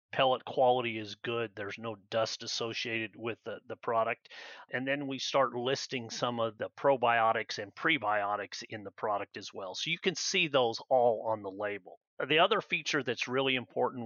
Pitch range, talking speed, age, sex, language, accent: 110-125 Hz, 185 wpm, 40-59, male, English, American